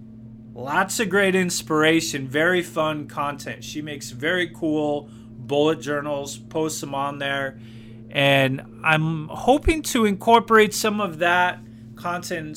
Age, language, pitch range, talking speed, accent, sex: 30-49, English, 115-175 Hz, 125 wpm, American, male